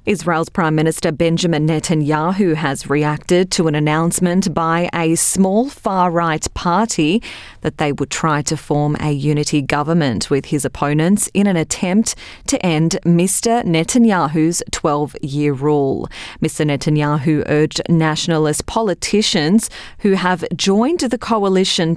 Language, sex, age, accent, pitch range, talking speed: English, female, 30-49, Australian, 150-185 Hz, 125 wpm